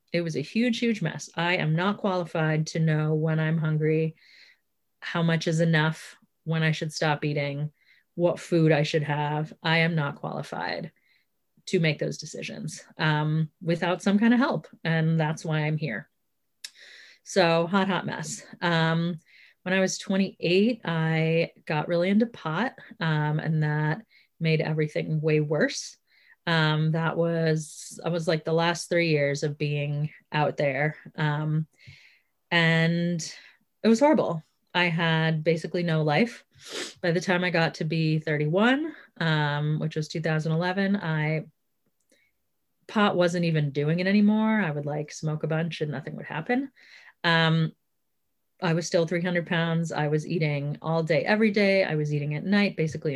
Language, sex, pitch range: English, female, 155-180 Hz